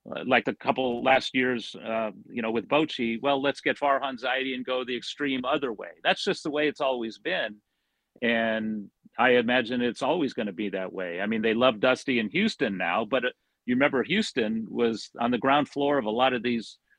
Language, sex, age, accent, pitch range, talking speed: English, male, 50-69, American, 120-145 Hz, 210 wpm